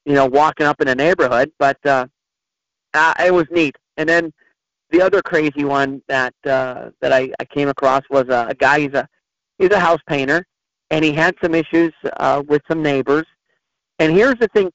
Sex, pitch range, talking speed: male, 140-185 Hz, 190 wpm